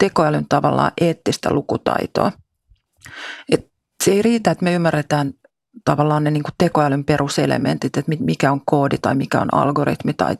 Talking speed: 145 wpm